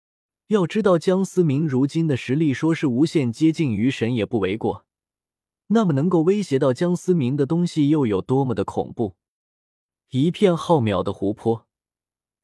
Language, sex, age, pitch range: Chinese, male, 20-39, 115-165 Hz